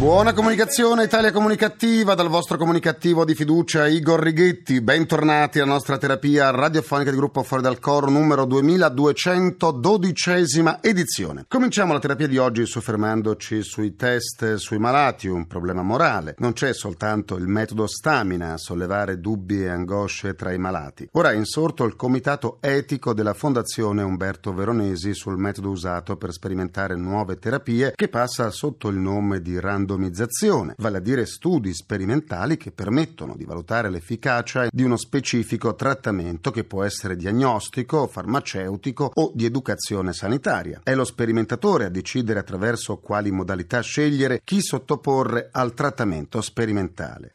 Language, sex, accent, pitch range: Italian, male, native, 100-145 Hz